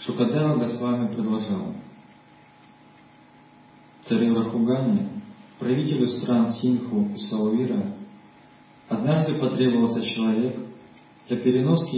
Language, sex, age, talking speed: Russian, male, 40-59, 75 wpm